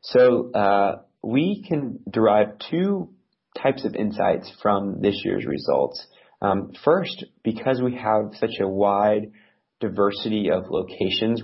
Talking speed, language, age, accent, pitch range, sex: 125 wpm, English, 30-49, American, 95-115 Hz, male